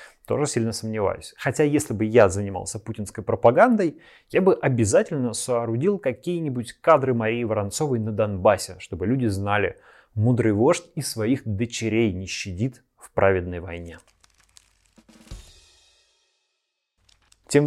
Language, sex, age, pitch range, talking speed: Russian, male, 20-39, 110-135 Hz, 115 wpm